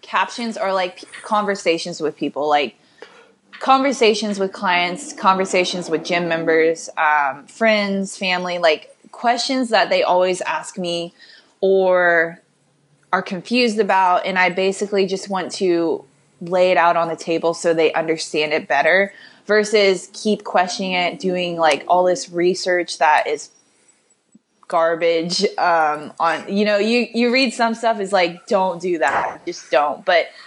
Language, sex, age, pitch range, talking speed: English, female, 20-39, 170-210 Hz, 145 wpm